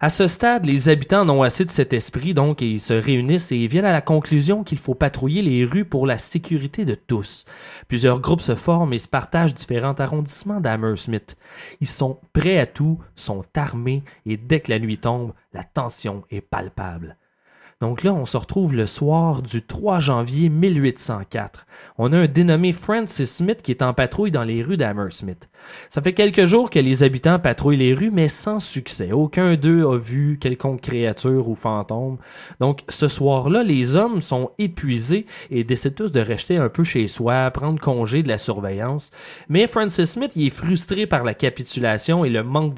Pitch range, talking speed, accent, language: 120-170 Hz, 190 wpm, Canadian, French